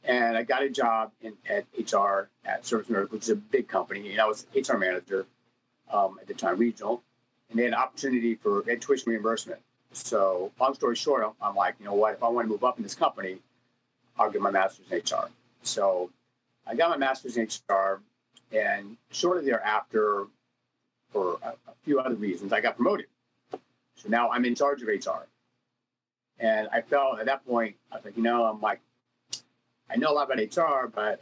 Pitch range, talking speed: 110-130 Hz, 200 wpm